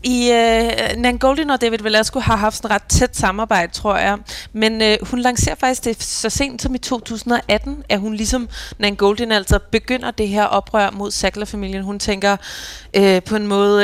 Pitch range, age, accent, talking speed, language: 195-225 Hz, 20-39, native, 200 wpm, Danish